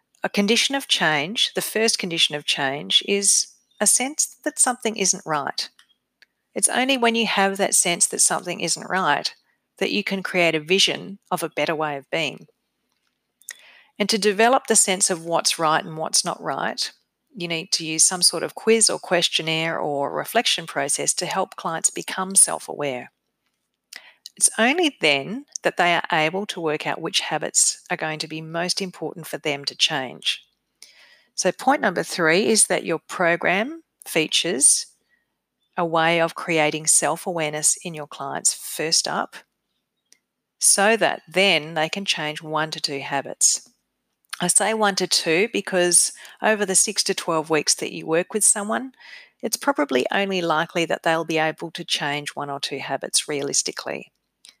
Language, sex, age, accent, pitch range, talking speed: English, female, 40-59, Australian, 160-215 Hz, 170 wpm